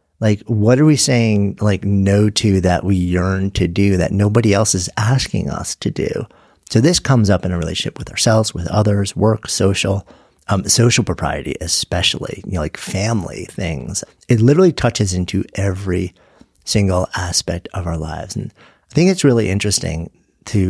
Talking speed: 175 wpm